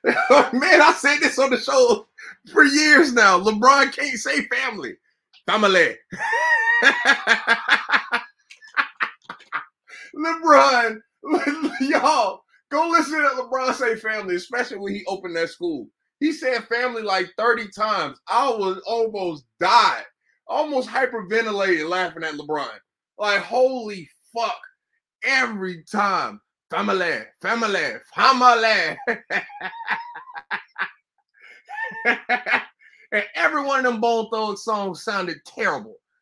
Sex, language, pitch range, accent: male, English, 205-305 Hz, American